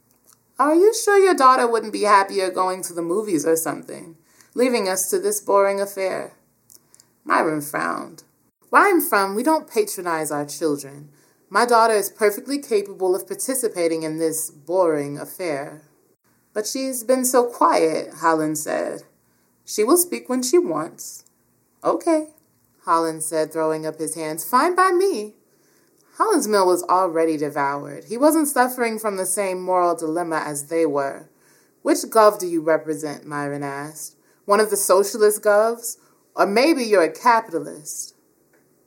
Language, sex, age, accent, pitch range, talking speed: English, female, 20-39, American, 155-240 Hz, 150 wpm